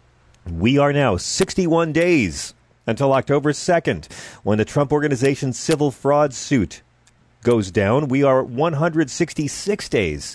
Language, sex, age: English, male, 40-59